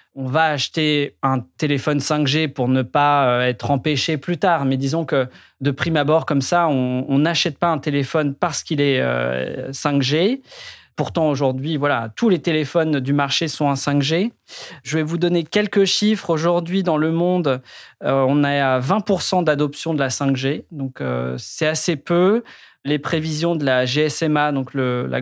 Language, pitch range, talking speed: French, 135-165 Hz, 170 wpm